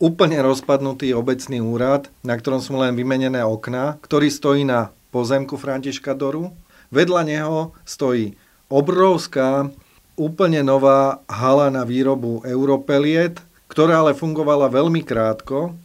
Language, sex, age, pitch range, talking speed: Slovak, male, 40-59, 115-140 Hz, 115 wpm